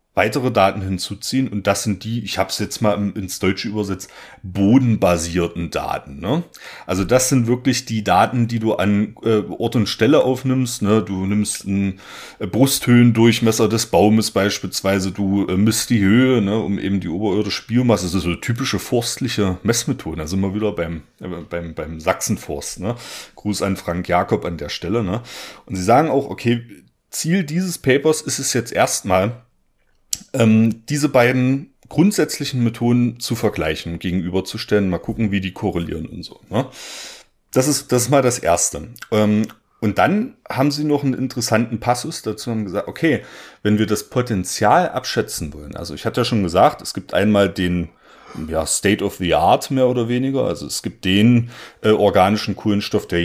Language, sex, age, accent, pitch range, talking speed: German, male, 40-59, German, 95-120 Hz, 170 wpm